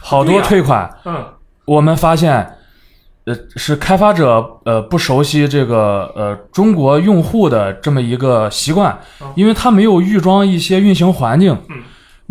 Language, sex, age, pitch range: Chinese, male, 20-39, 120-170 Hz